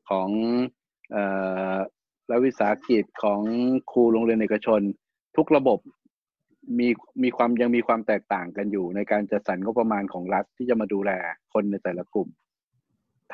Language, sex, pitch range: Thai, male, 105-120 Hz